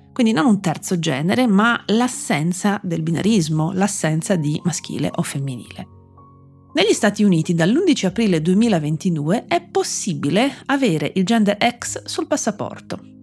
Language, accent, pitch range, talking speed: Italian, native, 160-240 Hz, 125 wpm